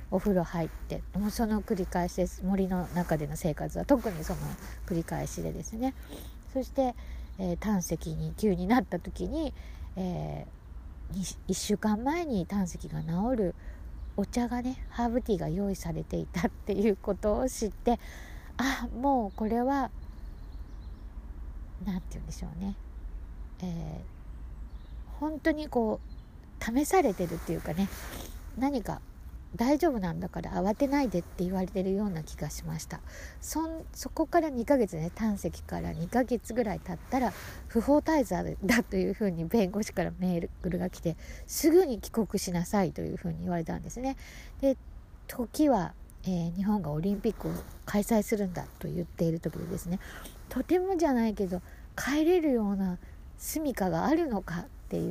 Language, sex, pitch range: Japanese, female, 170-240 Hz